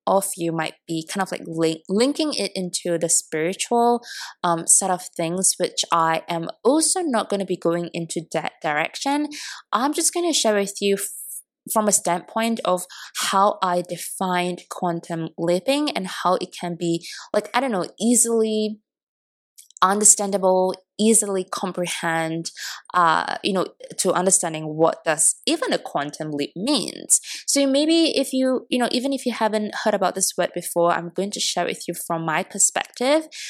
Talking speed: 170 wpm